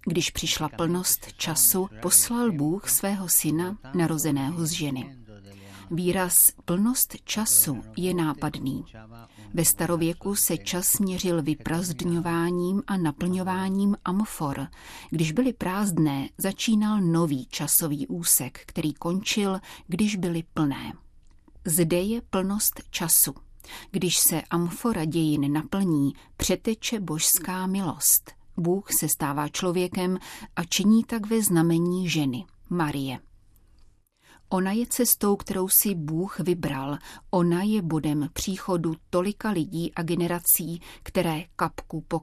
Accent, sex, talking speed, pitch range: native, female, 110 wpm, 155-195 Hz